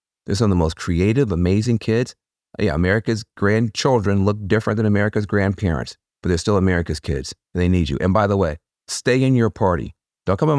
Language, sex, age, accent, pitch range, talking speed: English, male, 40-59, American, 95-145 Hz, 205 wpm